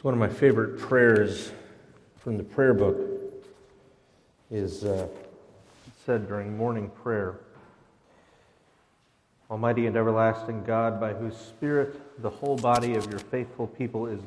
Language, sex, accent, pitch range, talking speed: English, male, American, 100-120 Hz, 125 wpm